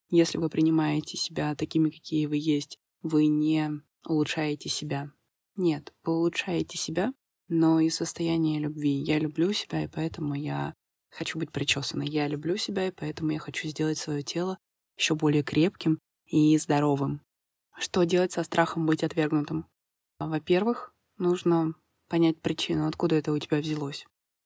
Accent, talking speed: native, 145 wpm